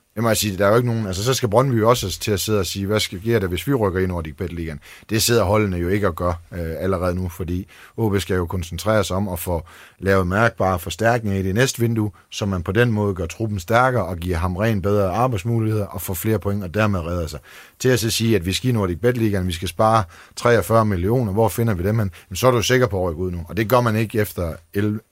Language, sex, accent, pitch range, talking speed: Danish, male, native, 95-120 Hz, 270 wpm